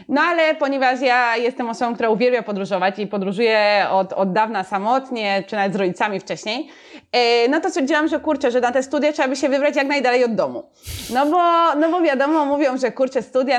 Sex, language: female, Polish